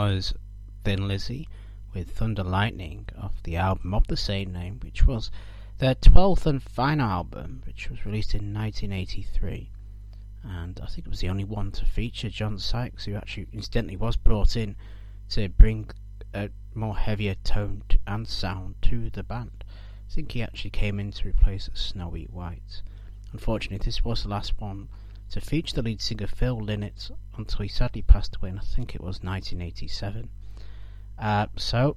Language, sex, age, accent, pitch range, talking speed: English, male, 30-49, British, 100-110 Hz, 165 wpm